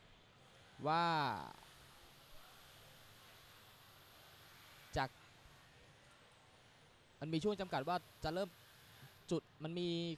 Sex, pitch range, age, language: male, 115-145 Hz, 20-39, Thai